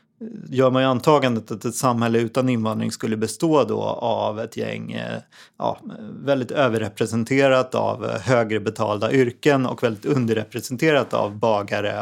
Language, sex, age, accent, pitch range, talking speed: Swedish, male, 30-49, native, 110-140 Hz, 130 wpm